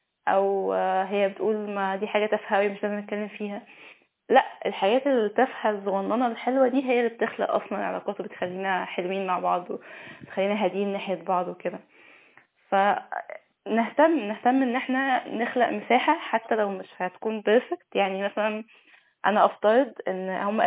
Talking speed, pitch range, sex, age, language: 140 wpm, 195-240 Hz, female, 10-29, Arabic